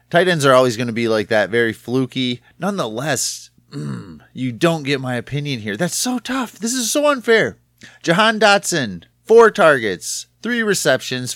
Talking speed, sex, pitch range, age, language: 165 wpm, male, 120-170 Hz, 30-49, English